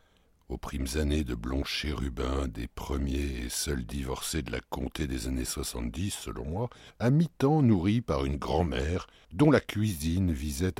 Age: 60-79